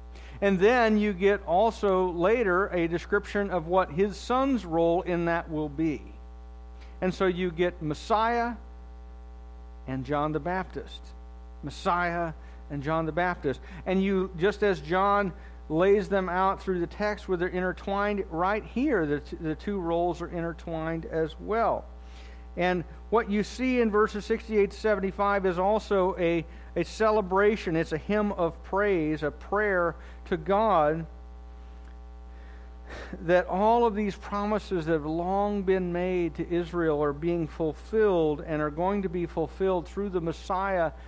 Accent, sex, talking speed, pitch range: American, male, 145 wpm, 150-200 Hz